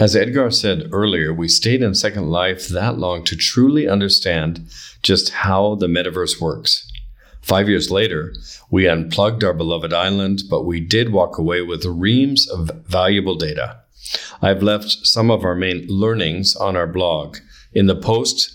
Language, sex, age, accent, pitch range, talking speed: English, male, 50-69, American, 80-100 Hz, 160 wpm